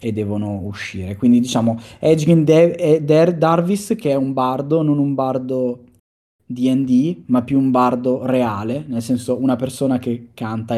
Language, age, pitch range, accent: Italian, 20-39, 120-145 Hz, native